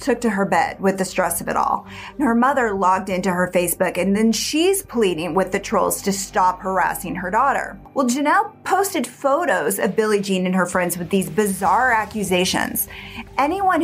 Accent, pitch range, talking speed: American, 185-265 Hz, 190 wpm